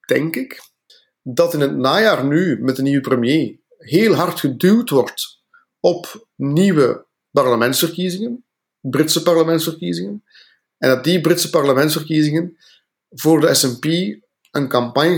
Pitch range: 125-165 Hz